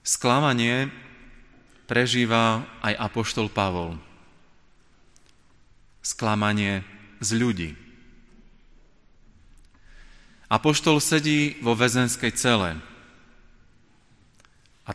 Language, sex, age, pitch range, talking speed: Slovak, male, 30-49, 105-125 Hz, 55 wpm